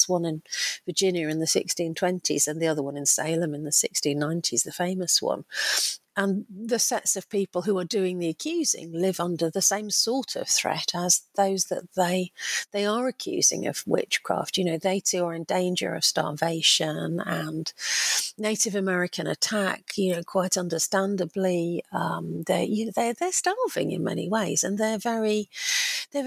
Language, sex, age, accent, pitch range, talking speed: English, female, 50-69, British, 170-215 Hz, 170 wpm